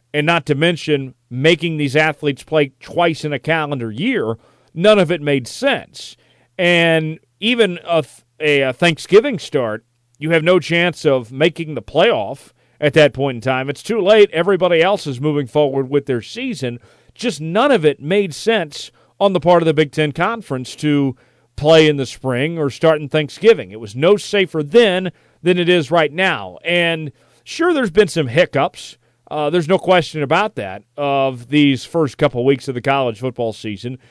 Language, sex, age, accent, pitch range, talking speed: English, male, 40-59, American, 135-175 Hz, 180 wpm